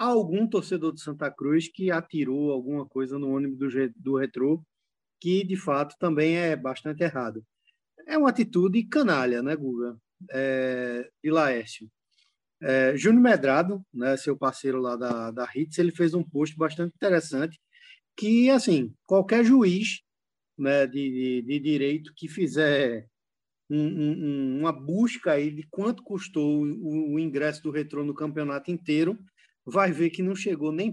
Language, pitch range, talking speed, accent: Portuguese, 140-190 Hz, 155 wpm, Brazilian